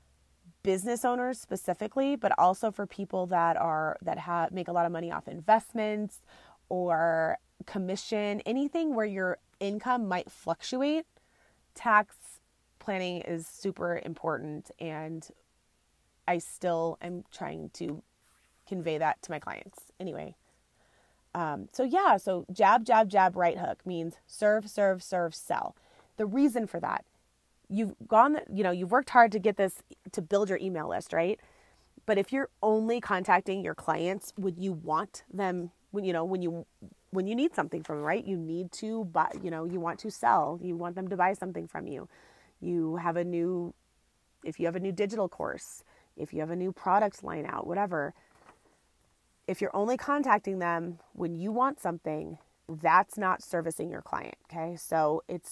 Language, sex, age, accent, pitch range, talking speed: English, female, 30-49, American, 170-210 Hz, 170 wpm